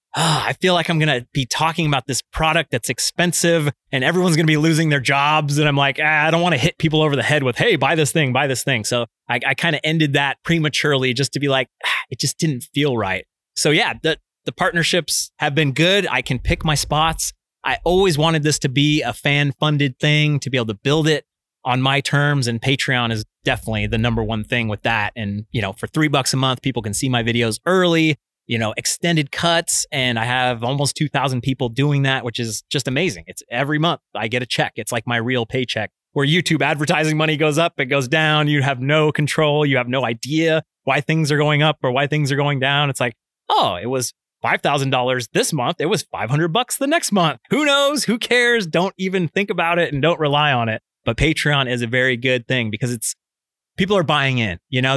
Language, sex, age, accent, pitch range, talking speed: English, male, 30-49, American, 125-155 Hz, 235 wpm